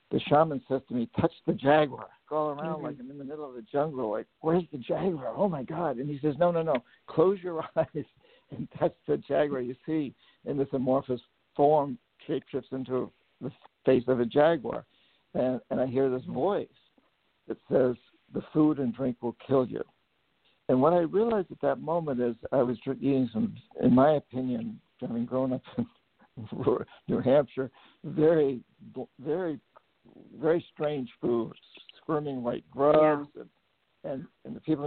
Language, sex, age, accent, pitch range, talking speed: English, male, 60-79, American, 125-150 Hz, 175 wpm